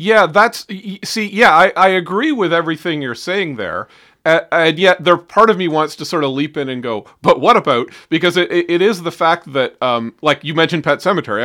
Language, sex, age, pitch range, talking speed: English, male, 40-59, 130-180 Hz, 225 wpm